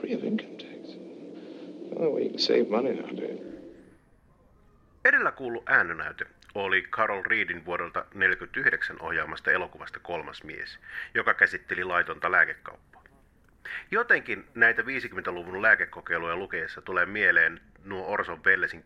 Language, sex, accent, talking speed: Finnish, male, native, 85 wpm